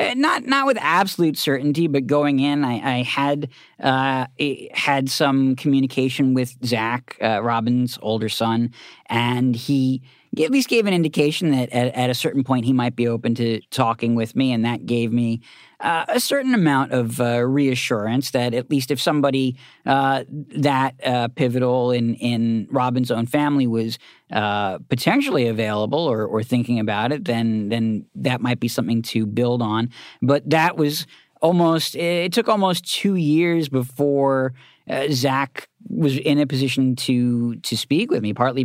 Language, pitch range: English, 120-145 Hz